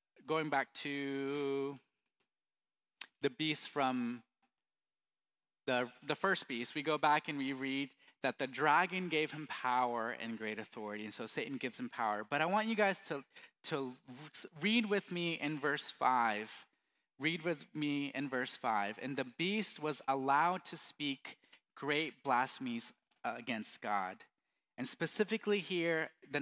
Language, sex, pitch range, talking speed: English, male, 135-195 Hz, 150 wpm